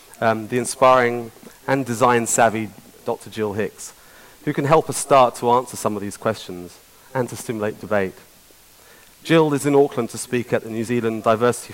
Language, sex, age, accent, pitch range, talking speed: English, male, 30-49, British, 105-125 Hz, 175 wpm